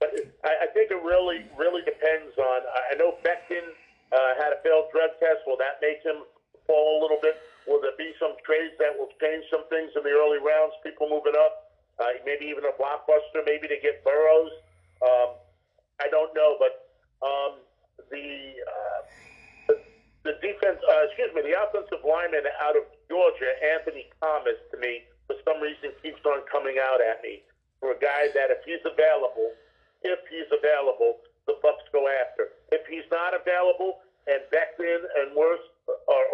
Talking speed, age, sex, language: 170 wpm, 50-69, male, English